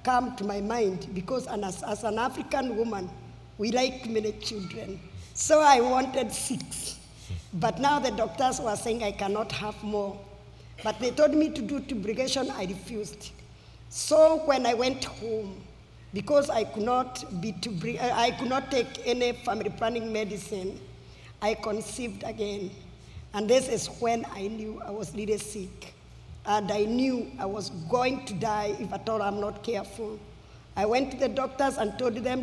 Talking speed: 165 wpm